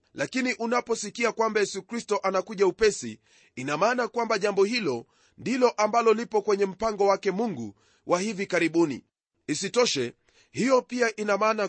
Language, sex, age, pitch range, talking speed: Swahili, male, 30-49, 180-225 Hz, 140 wpm